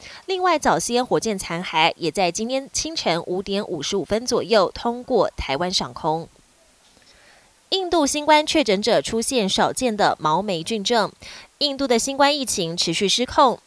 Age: 20-39